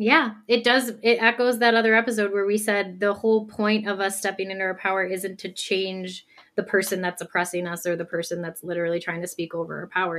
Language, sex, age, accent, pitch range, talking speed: English, female, 20-39, American, 195-250 Hz, 230 wpm